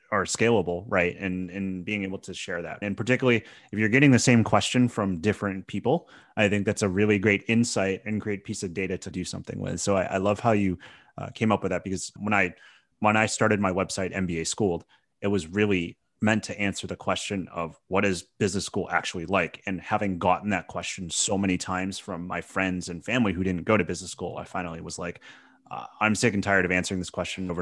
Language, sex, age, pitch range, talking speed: English, male, 30-49, 90-105 Hz, 230 wpm